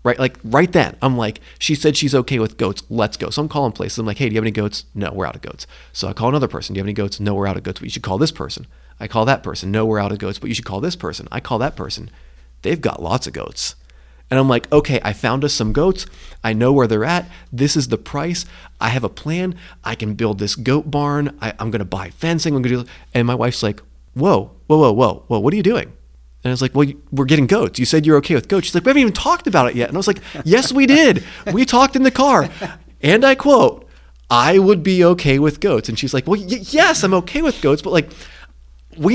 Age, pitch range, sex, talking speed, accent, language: 30-49, 110-175 Hz, male, 280 wpm, American, English